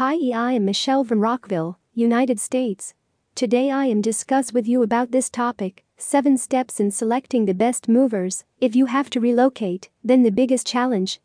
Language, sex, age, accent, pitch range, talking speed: English, female, 40-59, American, 225-260 Hz, 175 wpm